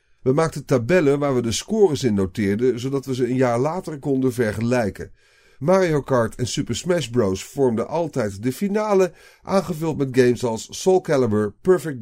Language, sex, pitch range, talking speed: Dutch, male, 105-145 Hz, 170 wpm